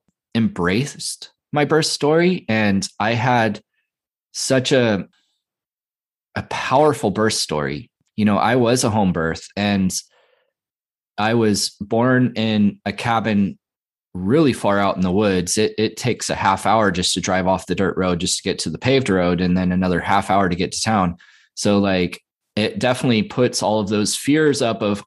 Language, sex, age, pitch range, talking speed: English, male, 20-39, 95-125 Hz, 175 wpm